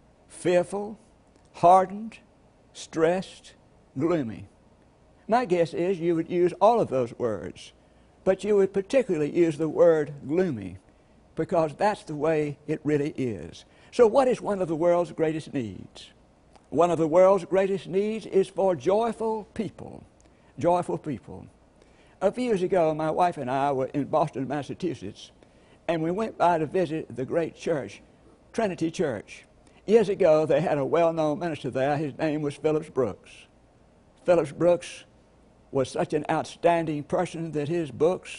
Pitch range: 145-185 Hz